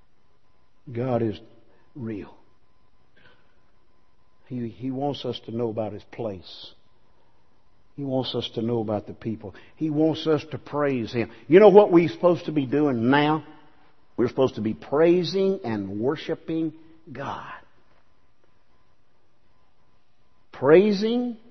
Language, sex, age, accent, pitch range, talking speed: English, male, 50-69, American, 130-205 Hz, 125 wpm